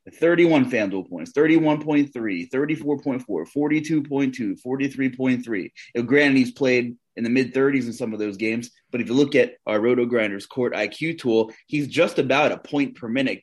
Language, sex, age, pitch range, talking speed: English, male, 20-39, 110-135 Hz, 145 wpm